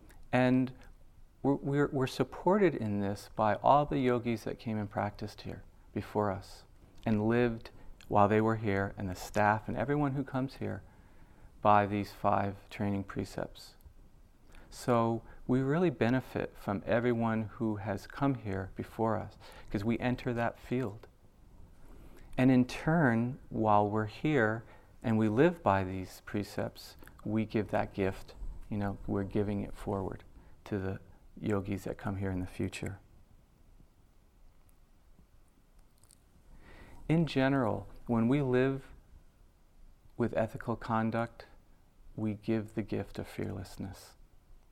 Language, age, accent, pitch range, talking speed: English, 40-59, American, 95-115 Hz, 135 wpm